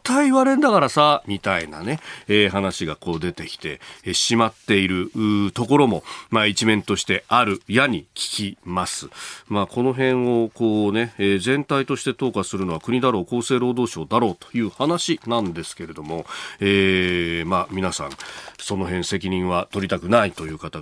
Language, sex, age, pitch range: Japanese, male, 40-59, 95-135 Hz